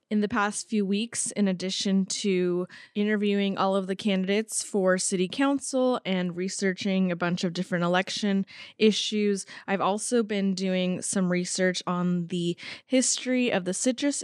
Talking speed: 150 wpm